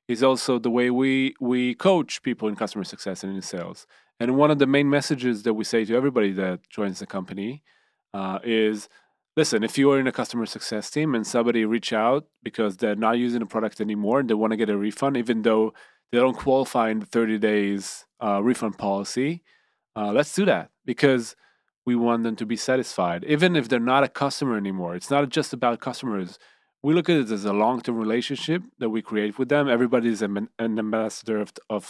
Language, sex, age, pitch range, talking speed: Hebrew, male, 30-49, 110-135 Hz, 210 wpm